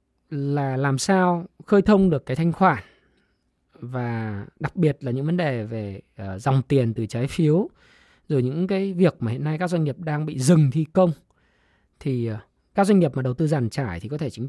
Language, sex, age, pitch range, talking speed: Vietnamese, male, 20-39, 125-180 Hz, 205 wpm